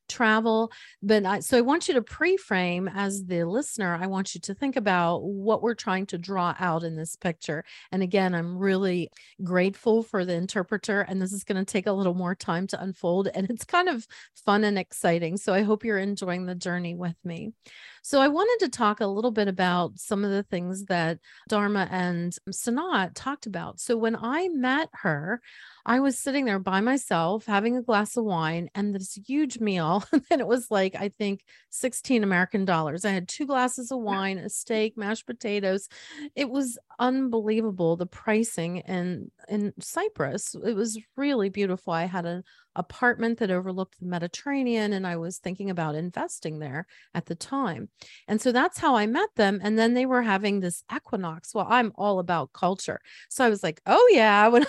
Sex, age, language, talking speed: female, 30-49, English, 195 wpm